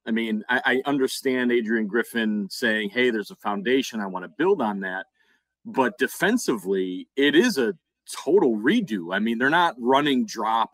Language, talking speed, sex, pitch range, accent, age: English, 175 wpm, male, 110-140 Hz, American, 30-49